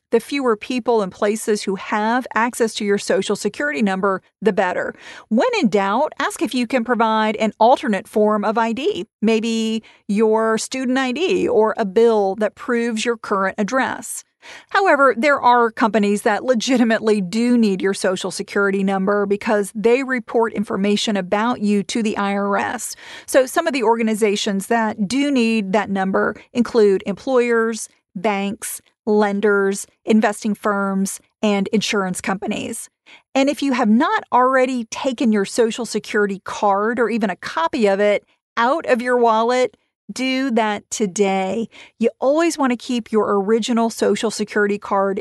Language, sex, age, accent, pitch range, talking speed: English, female, 40-59, American, 205-245 Hz, 155 wpm